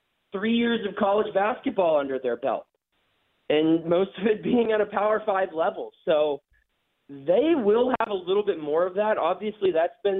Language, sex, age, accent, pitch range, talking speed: English, male, 20-39, American, 150-210 Hz, 180 wpm